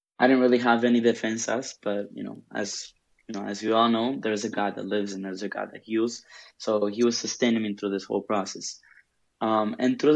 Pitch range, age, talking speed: 105-125 Hz, 20-39, 235 wpm